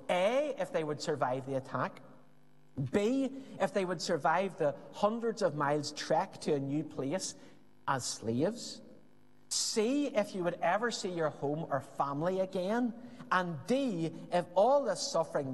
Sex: male